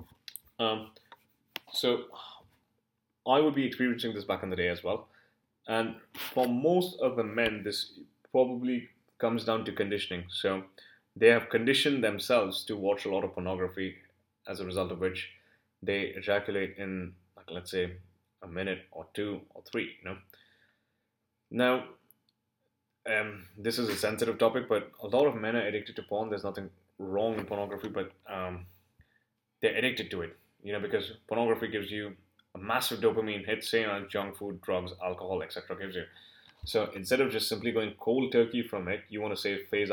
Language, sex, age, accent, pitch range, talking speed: English, male, 20-39, Indian, 95-115 Hz, 175 wpm